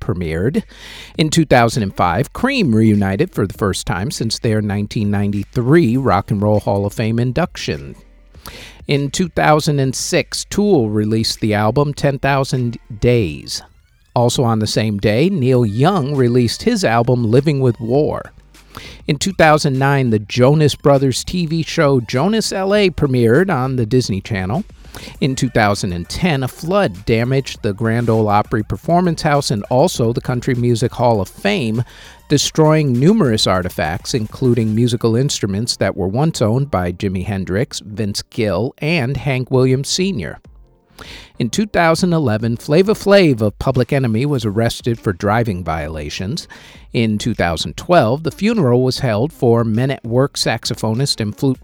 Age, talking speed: 50-69, 135 wpm